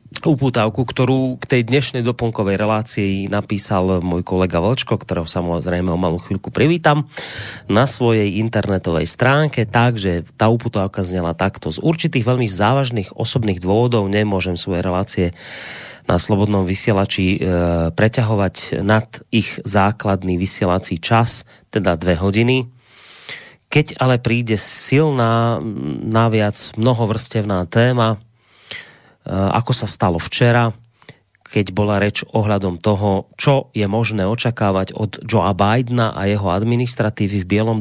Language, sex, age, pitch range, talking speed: Slovak, male, 30-49, 100-120 Hz, 120 wpm